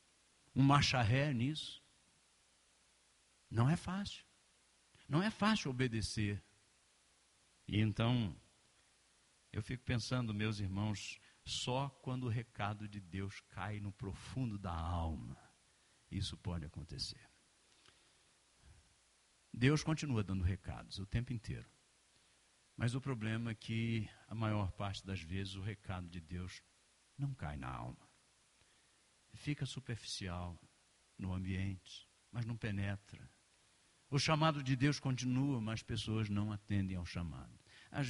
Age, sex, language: 50-69, male, Portuguese